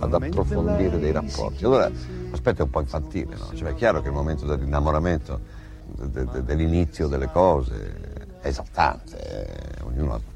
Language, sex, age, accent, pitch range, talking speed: Italian, male, 60-79, native, 70-85 Hz, 160 wpm